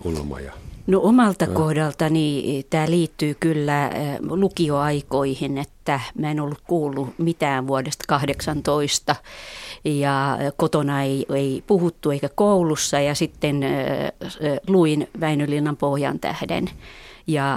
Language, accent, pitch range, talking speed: Finnish, native, 140-170 Hz, 100 wpm